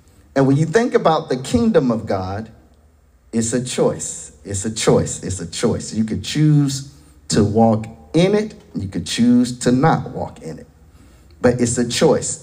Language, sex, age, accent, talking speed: English, male, 40-59, American, 185 wpm